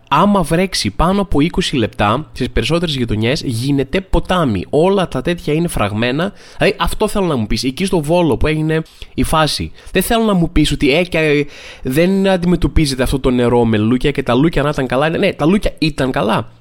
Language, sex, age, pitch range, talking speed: Greek, male, 20-39, 135-190 Hz, 190 wpm